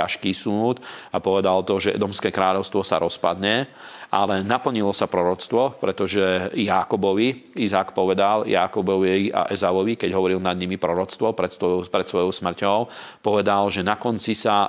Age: 40-59